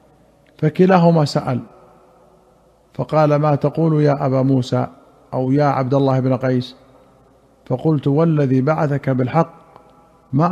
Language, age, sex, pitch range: Arabic, 50-69, male, 130-150 Hz